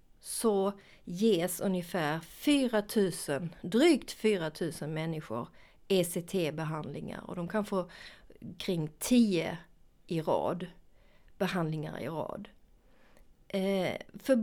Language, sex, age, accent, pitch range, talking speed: Swedish, female, 40-59, native, 175-245 Hz, 95 wpm